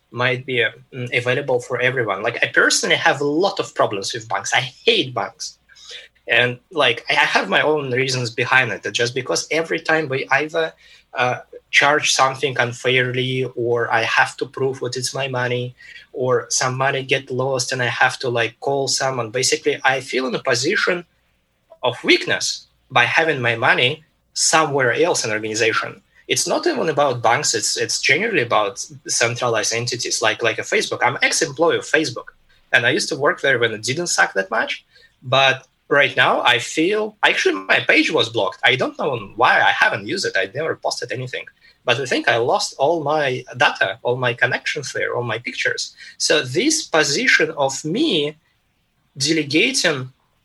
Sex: male